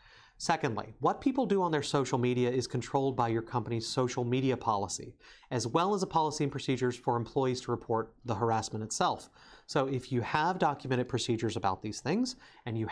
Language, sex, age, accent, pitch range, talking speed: English, male, 30-49, American, 115-140 Hz, 190 wpm